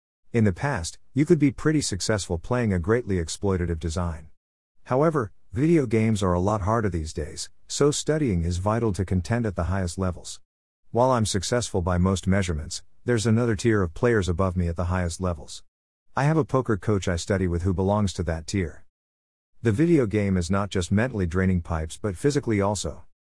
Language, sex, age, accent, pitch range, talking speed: English, male, 50-69, American, 85-115 Hz, 190 wpm